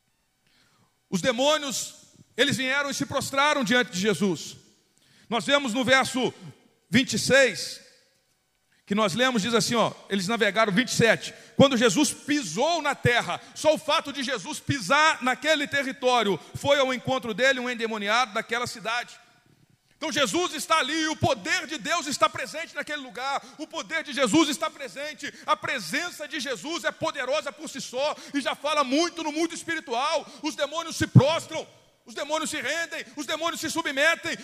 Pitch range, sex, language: 190-300 Hz, male, Portuguese